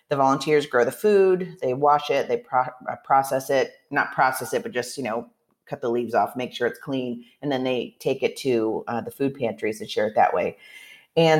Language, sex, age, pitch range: English, female, 40-59, 135-190 Hz